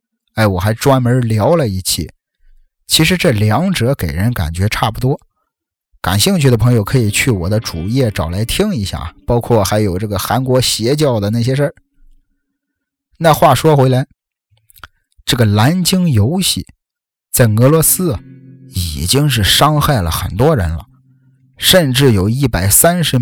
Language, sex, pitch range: Chinese, male, 110-155 Hz